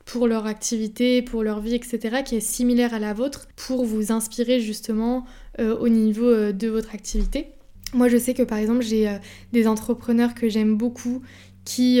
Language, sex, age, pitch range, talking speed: French, female, 20-39, 220-245 Hz, 185 wpm